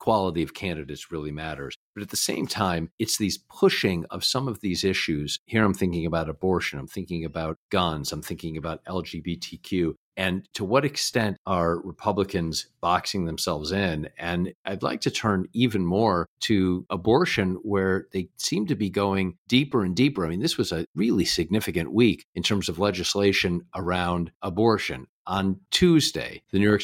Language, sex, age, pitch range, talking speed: English, male, 50-69, 90-110 Hz, 170 wpm